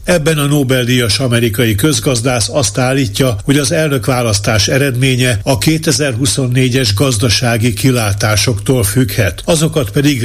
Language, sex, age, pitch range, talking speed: Hungarian, male, 60-79, 120-145 Hz, 105 wpm